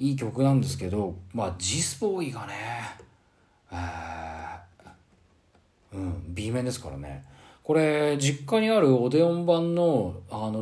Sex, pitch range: male, 90-135 Hz